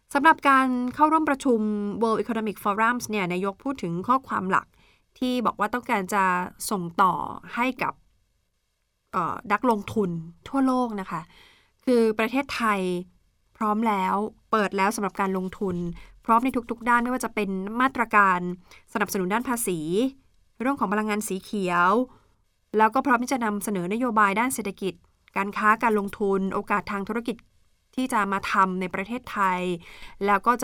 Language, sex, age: Thai, female, 20-39